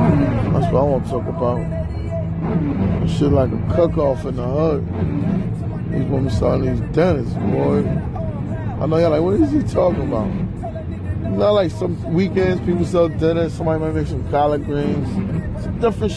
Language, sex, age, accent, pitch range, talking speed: English, male, 20-39, American, 105-170 Hz, 165 wpm